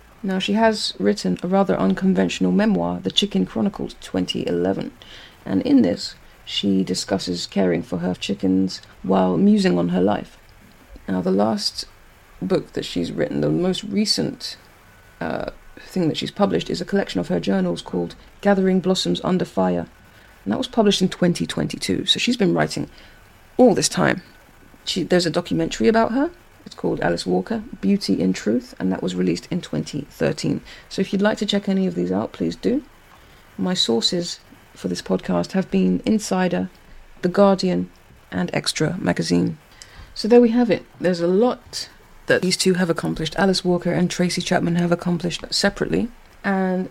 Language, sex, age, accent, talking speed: English, female, 30-49, British, 165 wpm